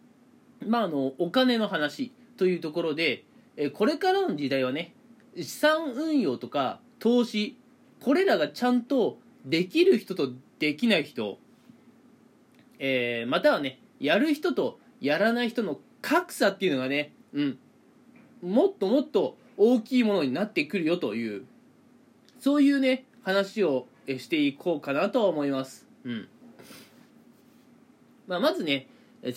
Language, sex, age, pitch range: Japanese, male, 20-39, 185-260 Hz